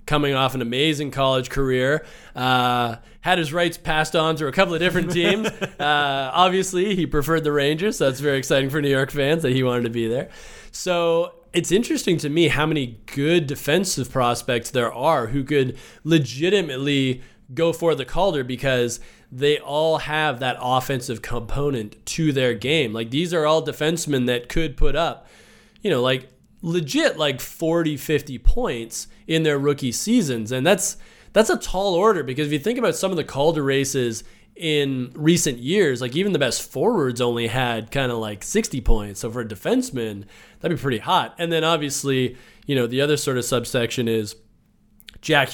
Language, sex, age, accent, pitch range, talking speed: English, male, 20-39, American, 125-160 Hz, 185 wpm